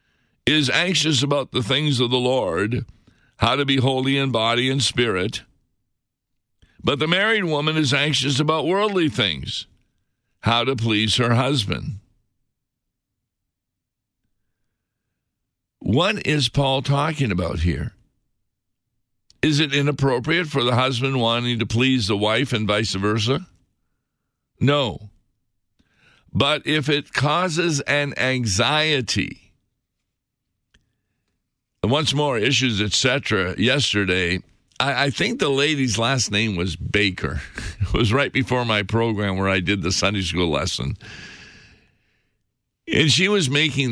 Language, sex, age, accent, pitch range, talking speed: English, male, 60-79, American, 105-135 Hz, 120 wpm